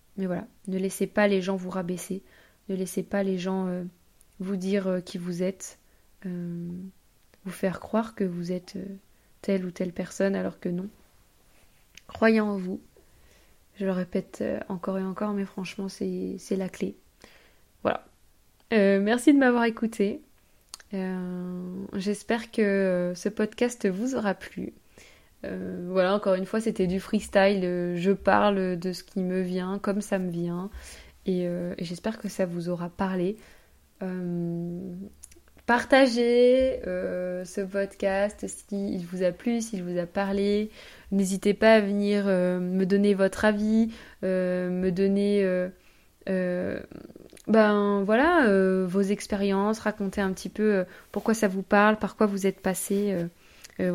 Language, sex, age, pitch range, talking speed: French, female, 20-39, 180-205 Hz, 155 wpm